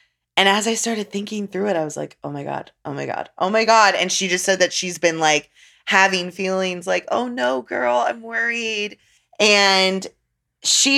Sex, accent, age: female, American, 20-39